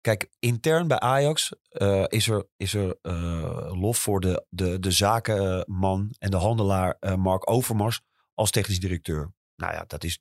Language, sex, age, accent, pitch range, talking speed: Dutch, male, 30-49, Dutch, 95-115 Hz, 170 wpm